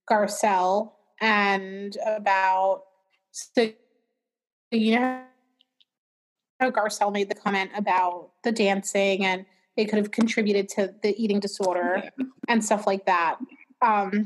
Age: 20-39